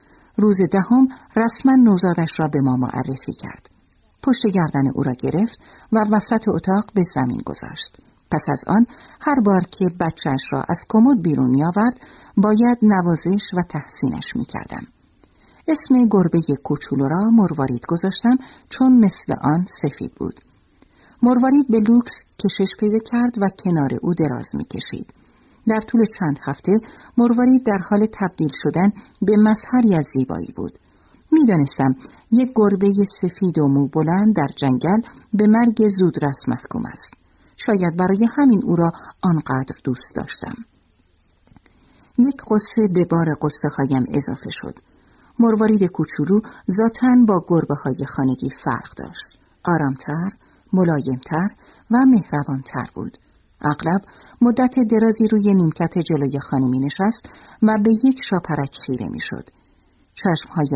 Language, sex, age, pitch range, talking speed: Persian, female, 50-69, 145-220 Hz, 135 wpm